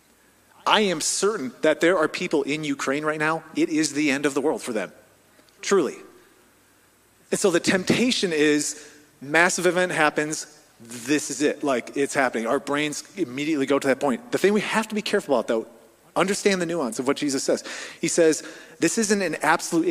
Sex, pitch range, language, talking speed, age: male, 145-185 Hz, English, 195 wpm, 30-49